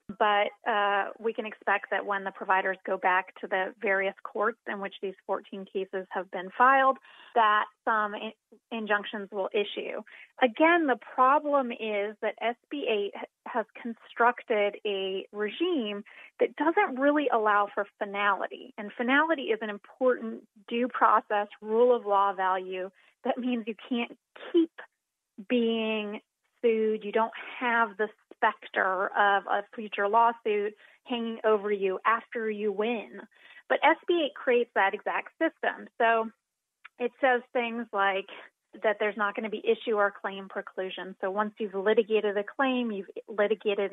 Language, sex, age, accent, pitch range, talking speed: English, female, 30-49, American, 205-250 Hz, 145 wpm